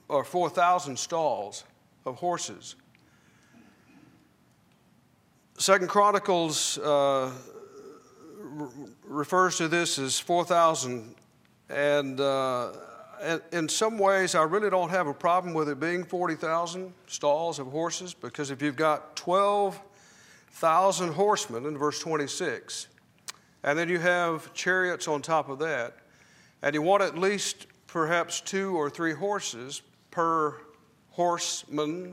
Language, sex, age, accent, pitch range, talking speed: English, male, 50-69, American, 145-180 Hz, 115 wpm